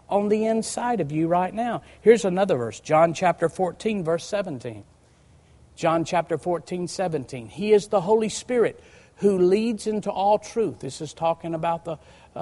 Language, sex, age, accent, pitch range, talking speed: English, male, 50-69, American, 135-205 Hz, 170 wpm